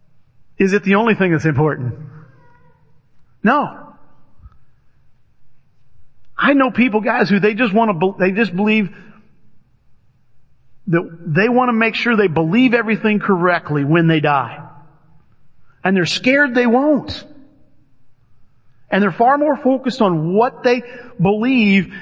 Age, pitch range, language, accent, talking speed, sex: 40-59, 160-240 Hz, English, American, 130 wpm, male